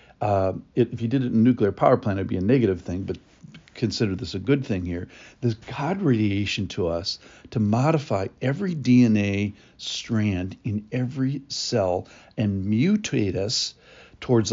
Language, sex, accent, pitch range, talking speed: English, male, American, 100-125 Hz, 165 wpm